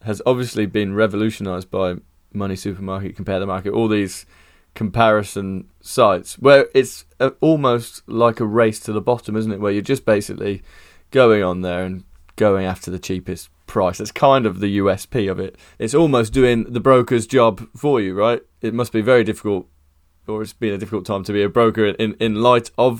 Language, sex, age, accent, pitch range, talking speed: English, male, 20-39, British, 95-120 Hz, 190 wpm